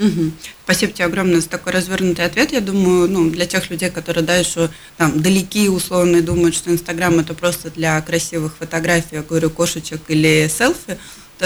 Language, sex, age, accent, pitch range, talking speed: Russian, female, 20-39, native, 160-185 Hz, 175 wpm